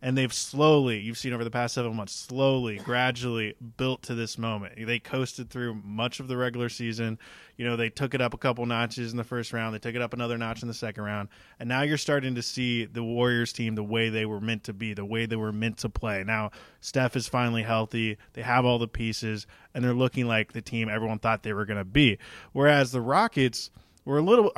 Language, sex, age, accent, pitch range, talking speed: English, male, 20-39, American, 115-130 Hz, 240 wpm